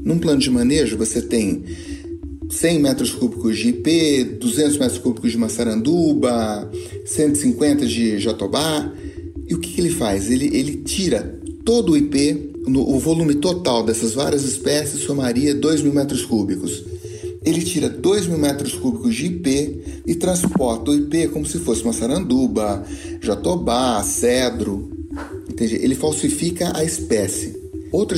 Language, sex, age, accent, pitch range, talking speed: Portuguese, male, 40-59, Brazilian, 115-165 Hz, 145 wpm